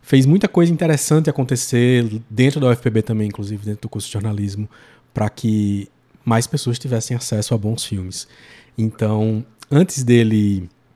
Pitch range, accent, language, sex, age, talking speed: 105-135 Hz, Brazilian, Portuguese, male, 20-39, 150 wpm